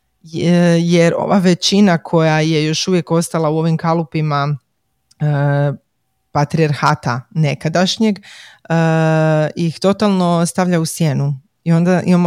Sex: female